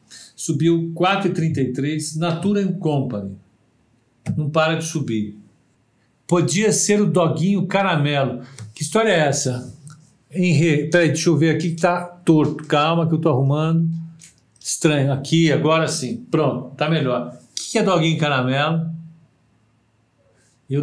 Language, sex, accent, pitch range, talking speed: Portuguese, male, Brazilian, 125-175 Hz, 125 wpm